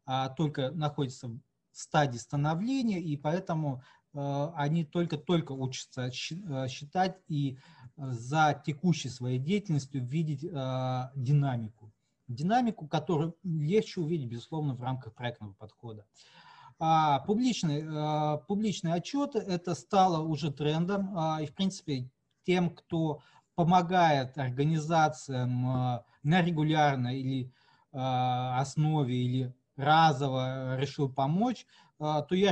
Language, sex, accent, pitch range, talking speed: Russian, male, native, 135-180 Hz, 90 wpm